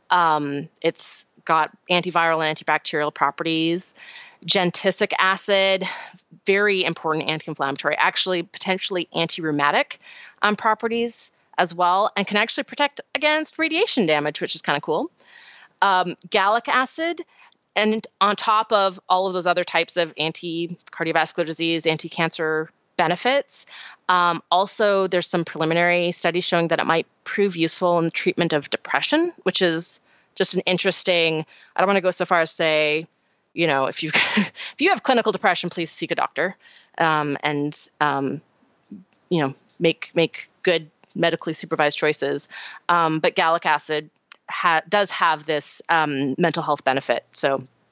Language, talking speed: English, 145 wpm